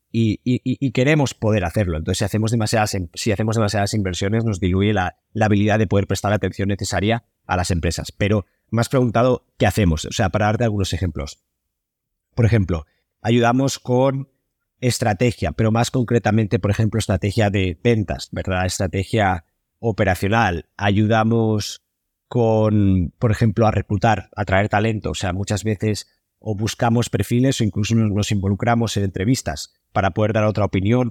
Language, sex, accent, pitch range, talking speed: Spanish, male, Spanish, 95-115 Hz, 155 wpm